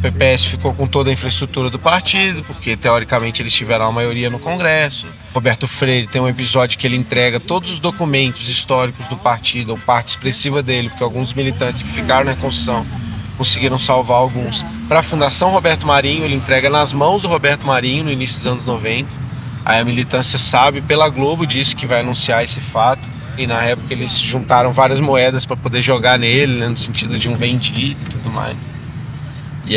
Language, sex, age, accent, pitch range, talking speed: Portuguese, male, 20-39, Brazilian, 120-140 Hz, 190 wpm